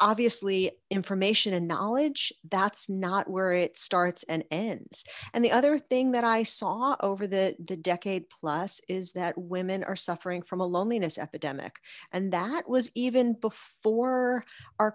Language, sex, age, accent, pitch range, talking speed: English, female, 40-59, American, 165-210 Hz, 155 wpm